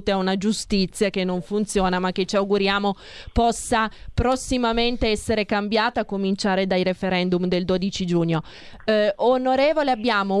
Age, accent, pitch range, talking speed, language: 20-39, native, 200-235 Hz, 140 wpm, Italian